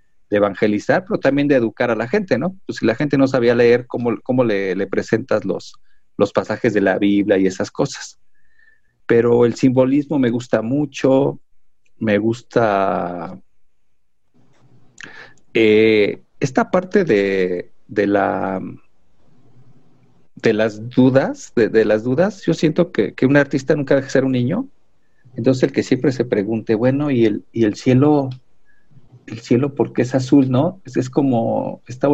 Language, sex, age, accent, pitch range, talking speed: Spanish, male, 50-69, Mexican, 115-155 Hz, 160 wpm